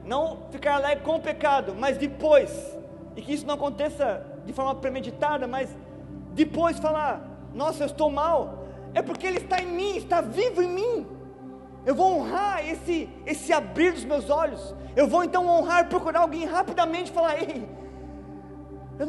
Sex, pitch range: male, 260-320 Hz